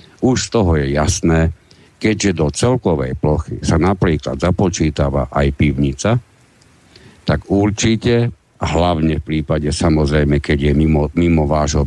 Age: 60-79